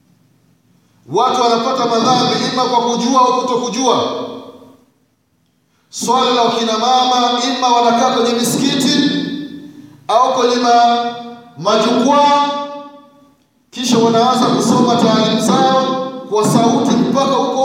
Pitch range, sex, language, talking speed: 225-265 Hz, male, Swahili, 90 wpm